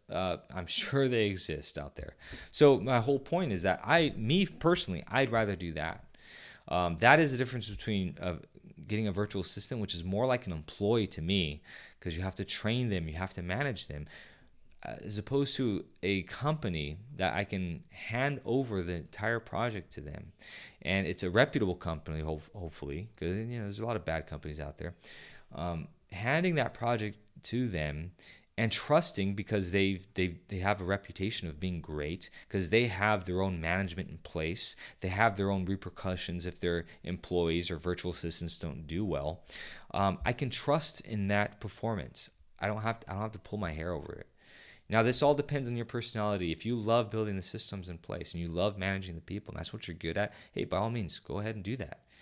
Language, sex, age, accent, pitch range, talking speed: English, male, 20-39, American, 85-115 Hz, 205 wpm